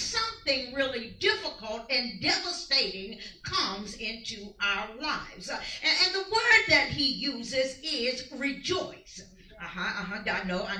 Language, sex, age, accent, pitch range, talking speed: English, female, 50-69, American, 220-335 Hz, 145 wpm